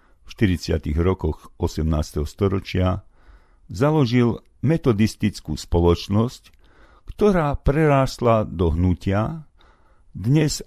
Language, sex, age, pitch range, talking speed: Slovak, male, 50-69, 85-110 Hz, 75 wpm